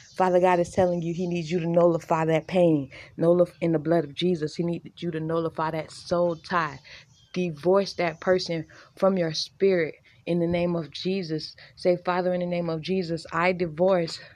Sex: female